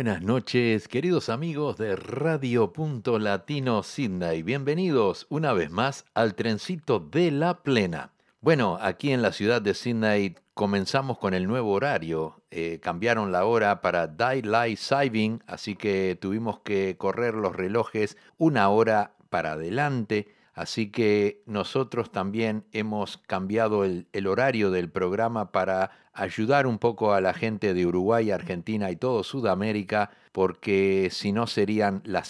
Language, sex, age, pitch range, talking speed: Spanish, male, 60-79, 95-120 Hz, 145 wpm